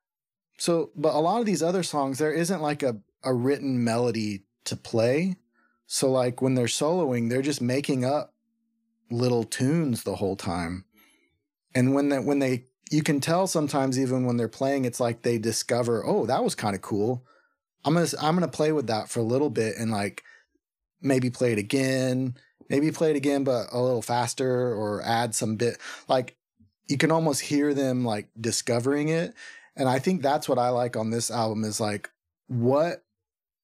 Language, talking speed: English, 190 wpm